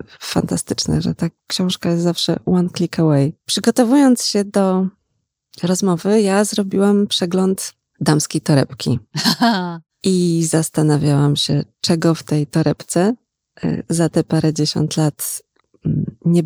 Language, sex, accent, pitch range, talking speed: Polish, female, native, 160-195 Hz, 115 wpm